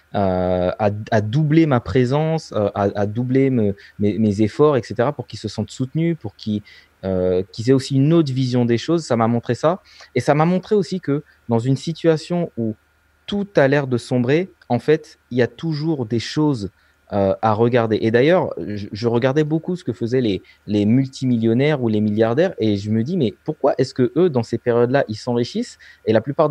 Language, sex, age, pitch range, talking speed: French, male, 20-39, 110-145 Hz, 210 wpm